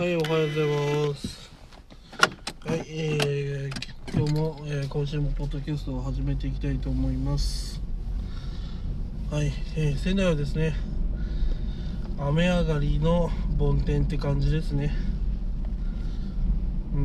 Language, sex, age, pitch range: Japanese, male, 20-39, 90-150 Hz